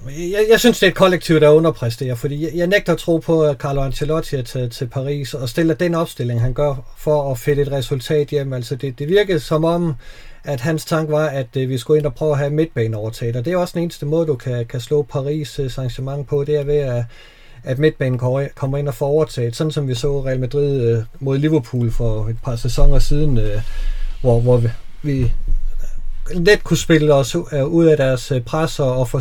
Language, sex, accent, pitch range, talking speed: Danish, male, native, 135-170 Hz, 215 wpm